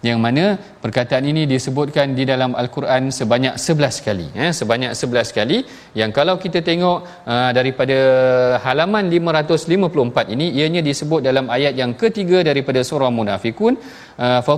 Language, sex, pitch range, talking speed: Malayalam, male, 130-165 Hz, 135 wpm